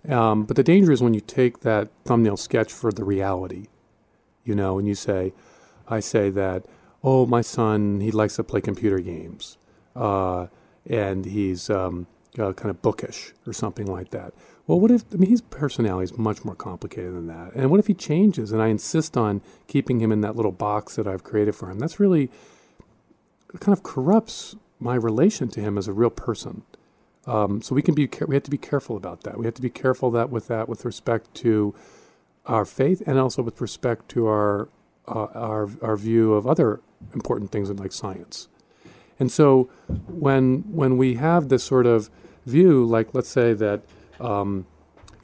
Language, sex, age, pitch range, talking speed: English, male, 40-59, 105-130 Hz, 190 wpm